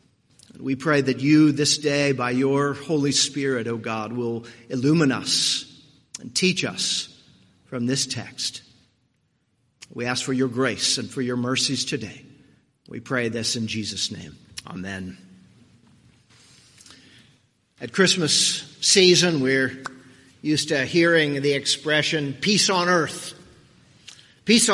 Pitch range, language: 130-165 Hz, English